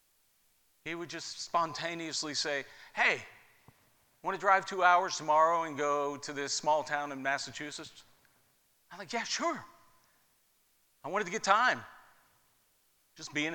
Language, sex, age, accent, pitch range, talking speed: English, male, 50-69, American, 125-155 Hz, 135 wpm